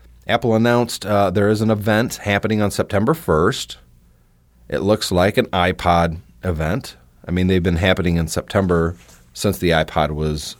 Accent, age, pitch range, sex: American, 30-49, 65-100 Hz, male